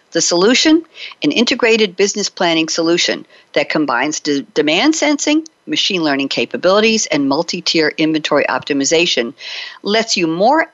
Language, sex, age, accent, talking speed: English, female, 60-79, American, 130 wpm